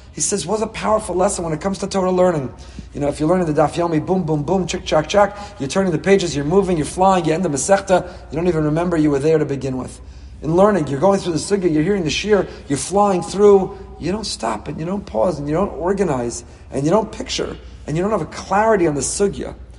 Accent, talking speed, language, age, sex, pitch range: American, 260 wpm, English, 40-59, male, 140-180 Hz